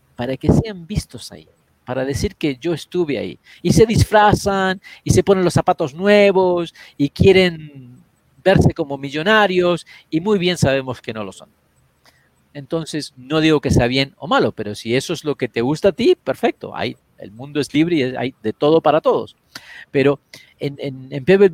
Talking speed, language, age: 185 wpm, Spanish, 40-59